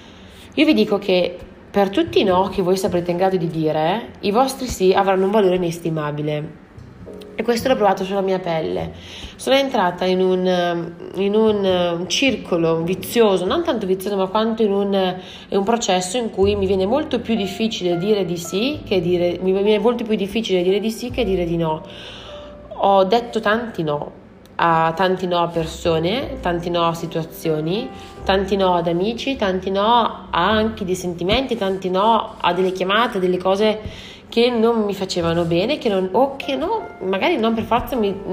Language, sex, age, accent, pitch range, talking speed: Italian, female, 20-39, native, 175-220 Hz, 180 wpm